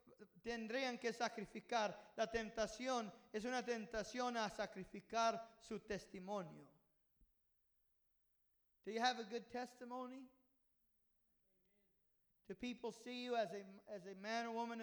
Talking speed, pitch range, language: 115 wpm, 205-245 Hz, English